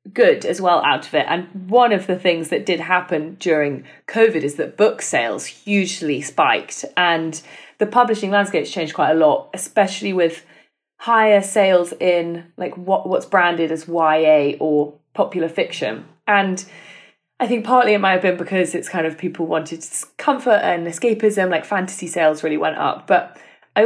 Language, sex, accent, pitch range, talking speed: English, female, British, 165-200 Hz, 175 wpm